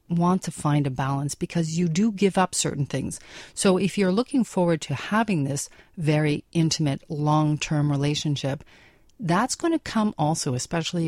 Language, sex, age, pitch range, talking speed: English, female, 40-59, 145-175 Hz, 170 wpm